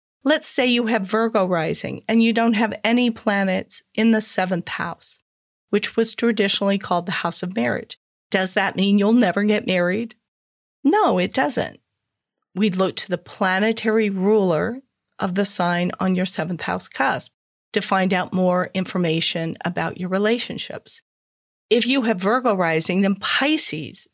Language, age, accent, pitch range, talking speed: English, 40-59, American, 190-230 Hz, 155 wpm